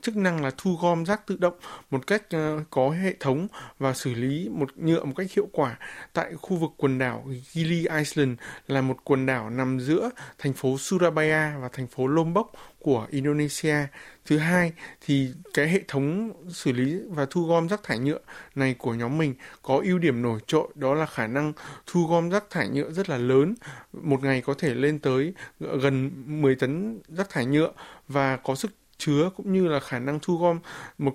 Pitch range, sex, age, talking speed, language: 135-170 Hz, male, 20-39, 200 wpm, Vietnamese